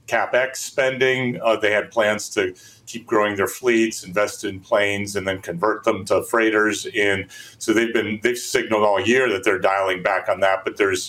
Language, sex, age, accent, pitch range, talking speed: English, male, 40-59, American, 100-110 Hz, 195 wpm